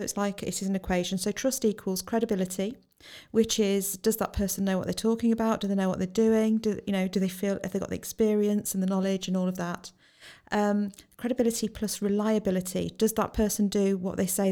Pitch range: 185-210 Hz